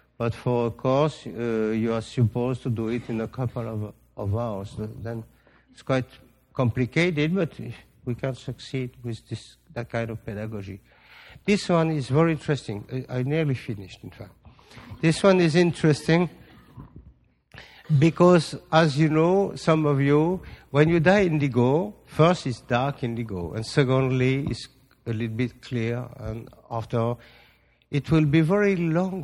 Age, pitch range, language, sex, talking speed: 50-69, 115-150 Hz, English, male, 150 wpm